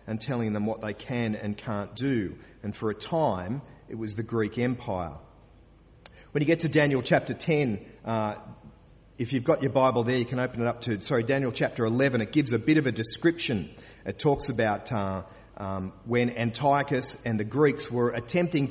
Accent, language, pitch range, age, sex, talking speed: Australian, English, 115-155 Hz, 40-59, male, 195 wpm